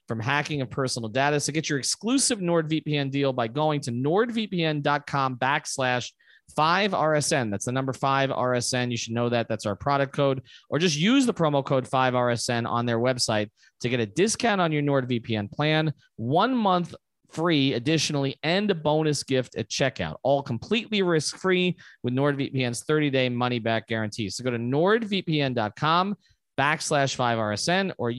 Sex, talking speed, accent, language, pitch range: male, 155 wpm, American, English, 120-150 Hz